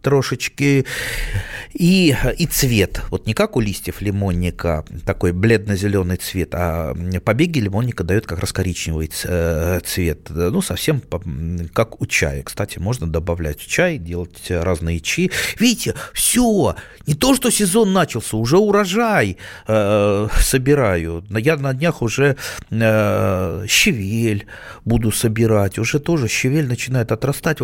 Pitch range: 95-155 Hz